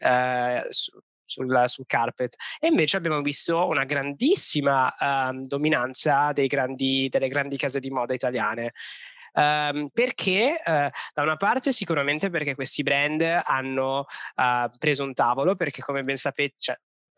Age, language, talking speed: 20-39, Italian, 110 wpm